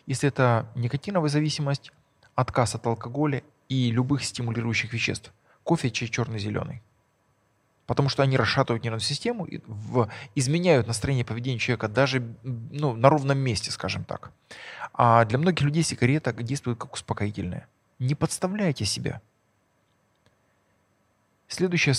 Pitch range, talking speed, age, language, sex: 115-145 Hz, 125 wpm, 20-39, Russian, male